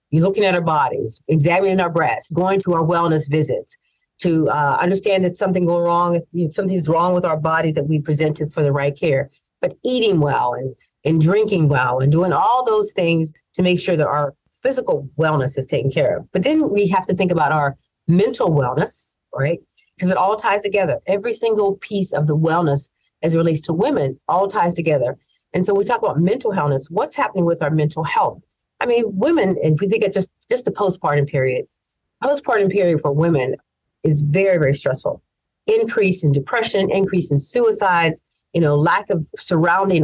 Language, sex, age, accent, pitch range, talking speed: English, female, 50-69, American, 150-195 Hz, 195 wpm